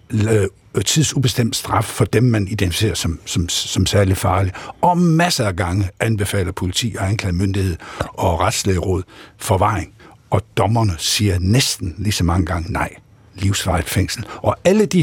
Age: 60-79